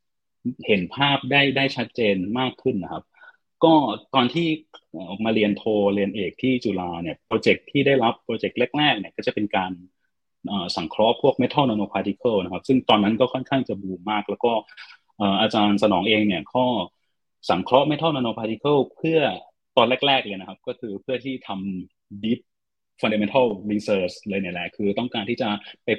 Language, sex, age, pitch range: Thai, male, 30-49, 100-130 Hz